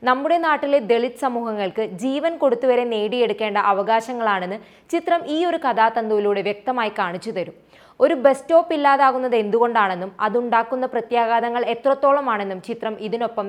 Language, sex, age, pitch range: Malayalam, female, 20-39, 205-270 Hz